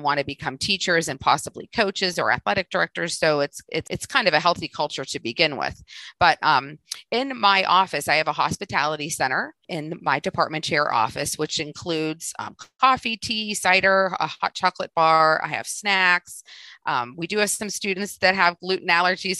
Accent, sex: American, female